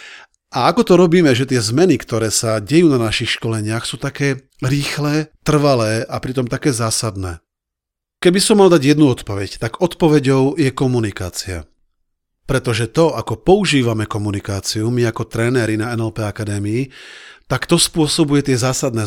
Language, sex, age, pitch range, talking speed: Slovak, male, 40-59, 115-155 Hz, 150 wpm